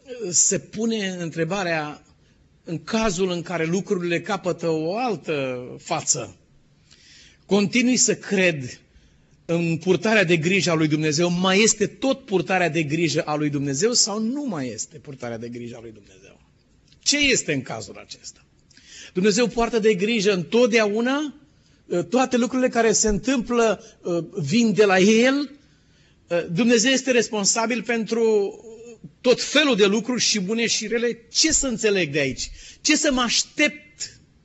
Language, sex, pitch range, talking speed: Romanian, male, 150-225 Hz, 140 wpm